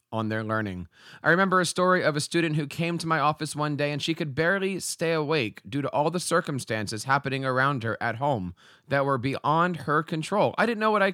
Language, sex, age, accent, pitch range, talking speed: English, male, 30-49, American, 135-180 Hz, 230 wpm